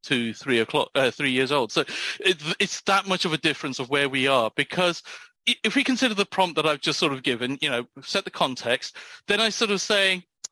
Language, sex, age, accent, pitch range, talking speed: English, male, 40-59, British, 150-205 Hz, 220 wpm